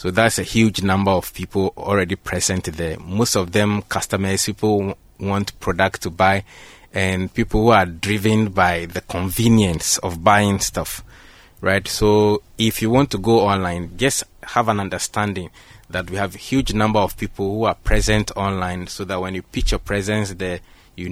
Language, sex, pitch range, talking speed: English, male, 95-110 Hz, 180 wpm